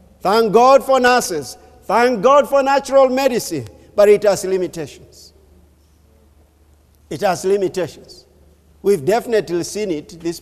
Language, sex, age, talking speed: English, male, 50-69, 120 wpm